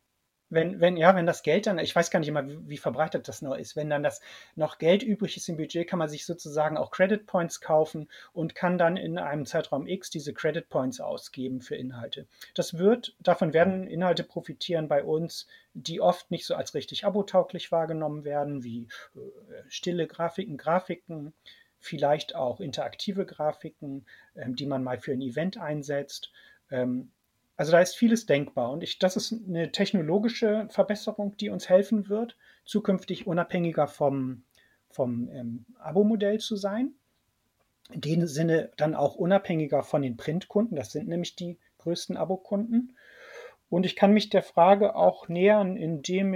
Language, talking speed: German, 170 wpm